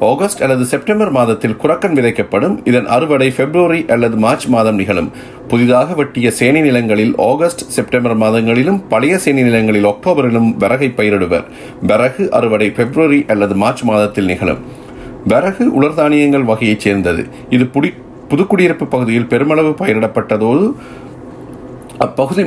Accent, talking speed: native, 110 wpm